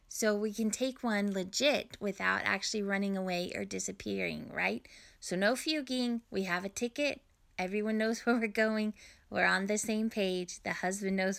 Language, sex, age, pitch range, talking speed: English, female, 20-39, 190-240 Hz, 175 wpm